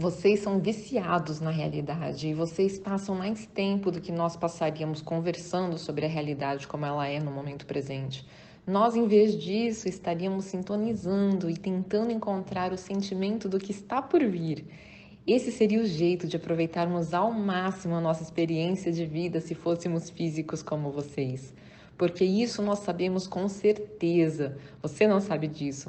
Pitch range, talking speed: 165-205 Hz, 160 wpm